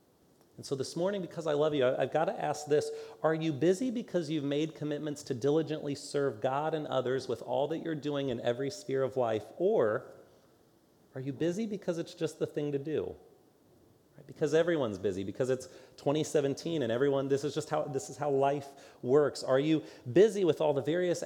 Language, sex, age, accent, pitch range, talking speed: English, male, 30-49, American, 135-160 Hz, 200 wpm